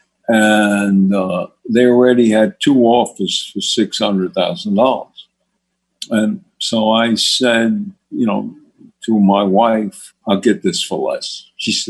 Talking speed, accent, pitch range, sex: 125 wpm, American, 115-170 Hz, male